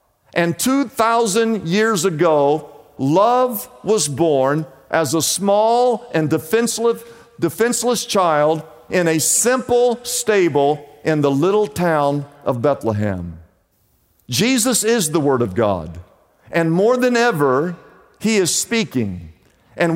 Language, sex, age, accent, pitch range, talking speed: English, male, 50-69, American, 145-220 Hz, 115 wpm